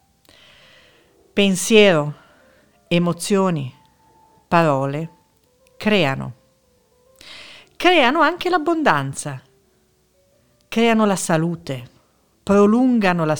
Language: Italian